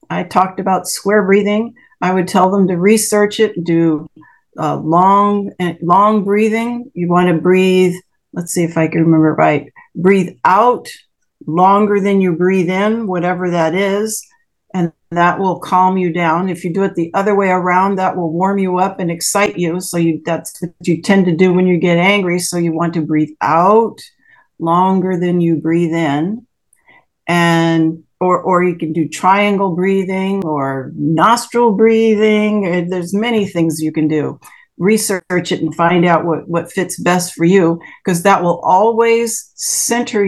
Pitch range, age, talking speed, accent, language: 165-195 Hz, 50-69, 175 wpm, American, English